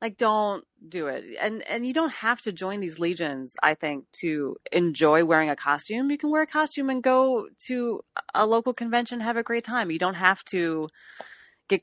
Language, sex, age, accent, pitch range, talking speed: English, female, 30-49, American, 165-230 Hz, 205 wpm